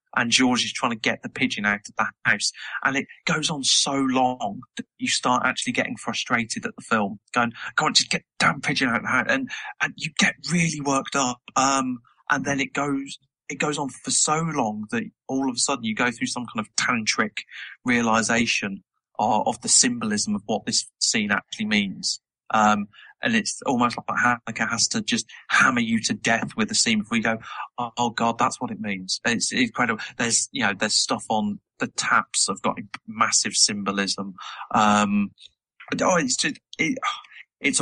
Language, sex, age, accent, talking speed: English, male, 30-49, British, 200 wpm